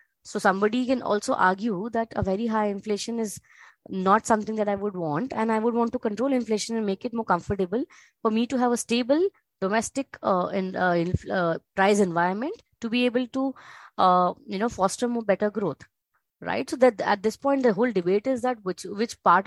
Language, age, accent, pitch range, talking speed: English, 20-39, Indian, 175-230 Hz, 205 wpm